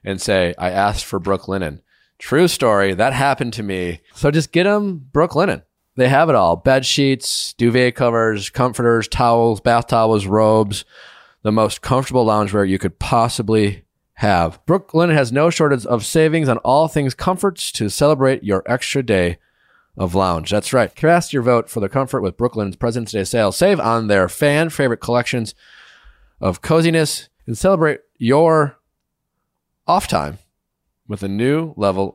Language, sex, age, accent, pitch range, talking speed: English, male, 30-49, American, 100-140 Hz, 160 wpm